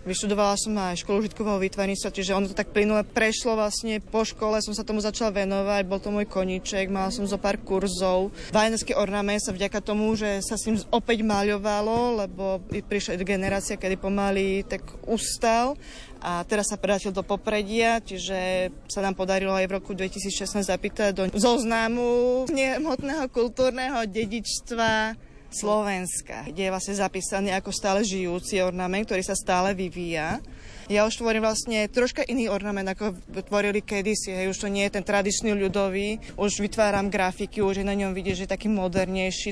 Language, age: Slovak, 20-39